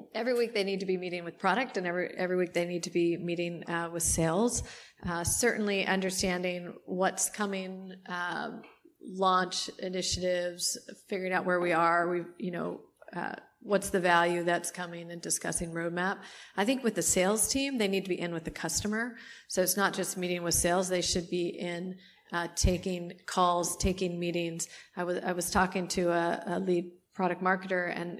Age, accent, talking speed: 30-49, American, 185 wpm